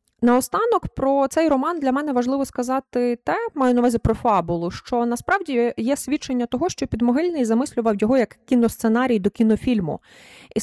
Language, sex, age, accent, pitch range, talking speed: Ukrainian, female, 20-39, native, 240-285 Hz, 160 wpm